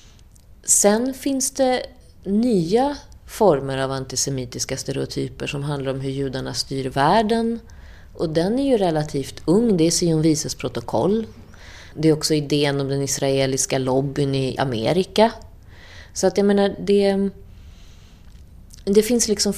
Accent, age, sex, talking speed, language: Swedish, 30-49, female, 130 wpm, Finnish